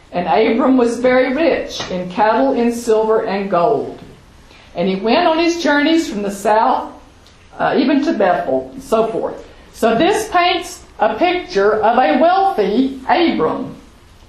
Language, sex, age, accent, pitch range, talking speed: English, female, 50-69, American, 225-335 Hz, 150 wpm